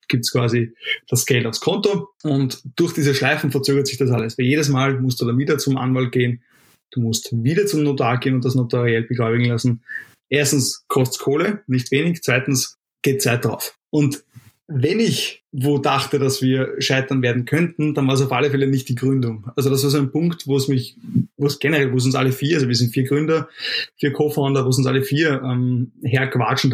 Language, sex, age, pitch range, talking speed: German, male, 20-39, 130-145 Hz, 215 wpm